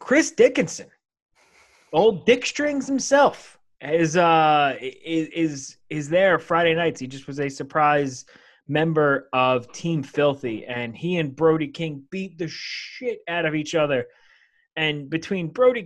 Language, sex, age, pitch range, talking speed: English, male, 20-39, 125-165 Hz, 140 wpm